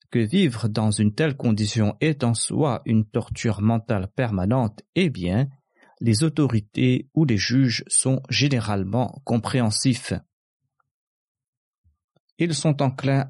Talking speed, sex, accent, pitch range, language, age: 115 wpm, male, French, 110-145 Hz, French, 40-59